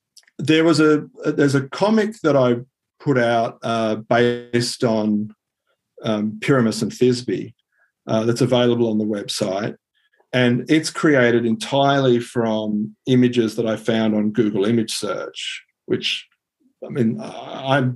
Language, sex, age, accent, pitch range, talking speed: English, male, 50-69, Australian, 110-125 Hz, 135 wpm